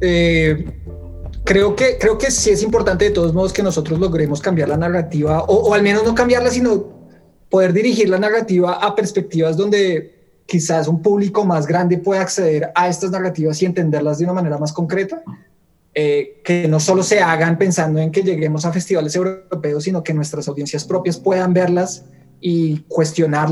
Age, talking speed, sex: 20-39, 180 wpm, male